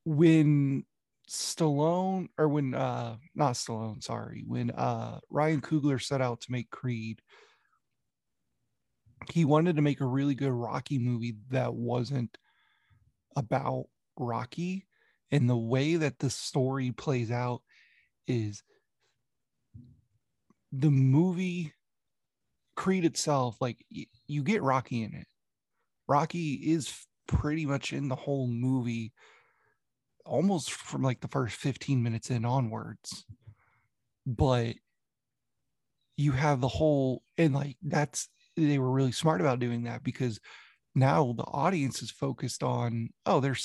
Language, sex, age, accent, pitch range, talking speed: English, male, 30-49, American, 120-145 Hz, 125 wpm